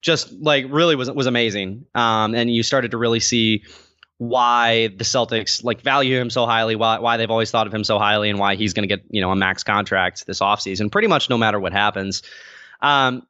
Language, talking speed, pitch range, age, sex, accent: English, 220 wpm, 110-135 Hz, 20-39, male, American